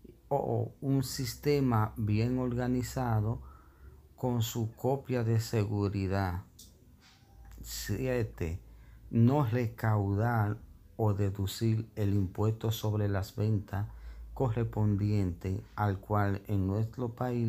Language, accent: Spanish, American